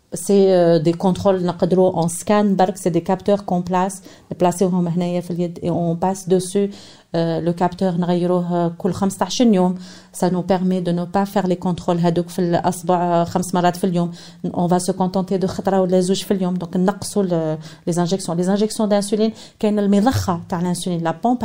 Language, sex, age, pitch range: French, female, 40-59, 175-215 Hz